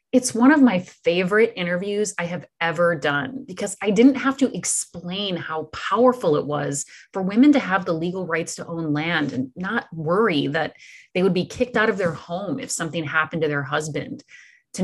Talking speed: 200 wpm